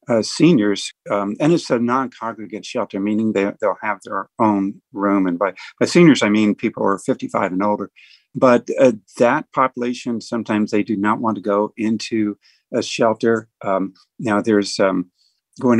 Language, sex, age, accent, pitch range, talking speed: English, male, 50-69, American, 105-125 Hz, 170 wpm